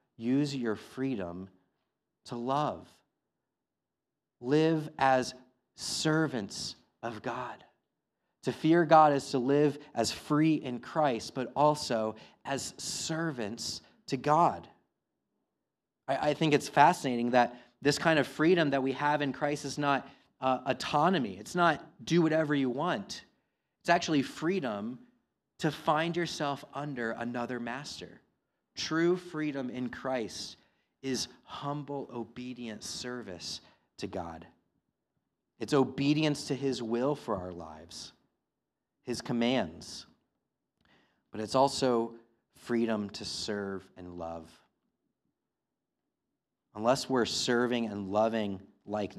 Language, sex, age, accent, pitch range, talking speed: English, male, 30-49, American, 110-145 Hz, 115 wpm